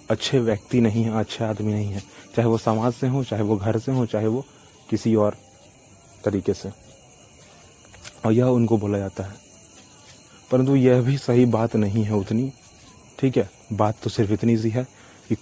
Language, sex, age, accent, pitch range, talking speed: Hindi, male, 30-49, native, 105-125 Hz, 185 wpm